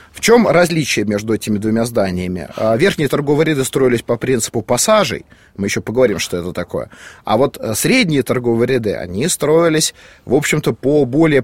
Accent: native